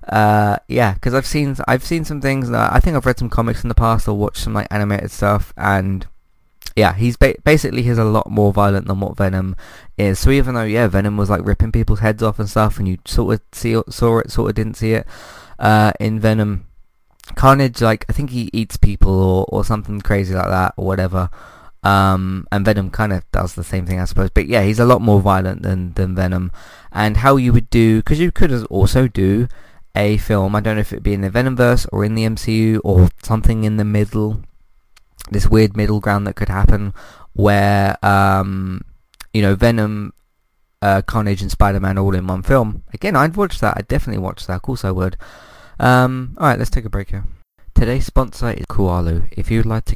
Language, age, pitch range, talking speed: English, 20-39, 95-115 Hz, 220 wpm